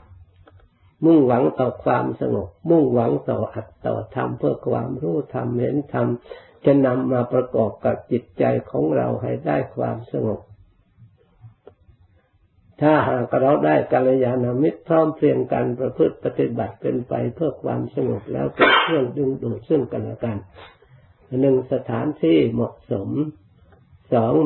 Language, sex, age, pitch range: Thai, male, 60-79, 95-130 Hz